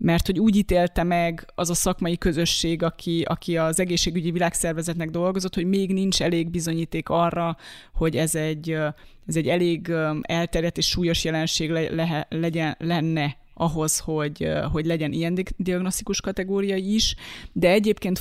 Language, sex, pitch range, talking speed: Hungarian, female, 165-200 Hz, 150 wpm